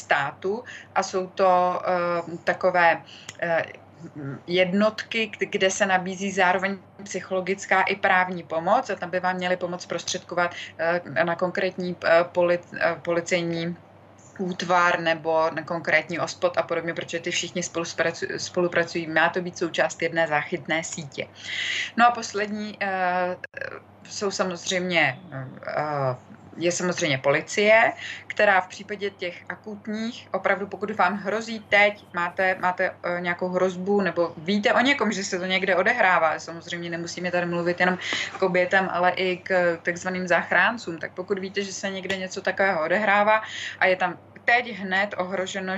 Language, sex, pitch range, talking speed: Czech, female, 165-190 Hz, 145 wpm